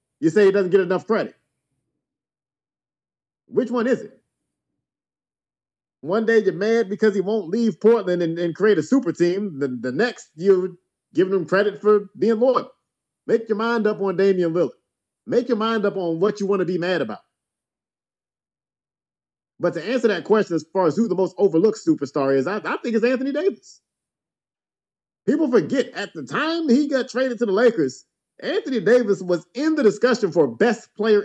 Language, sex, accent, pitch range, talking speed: English, male, American, 175-240 Hz, 180 wpm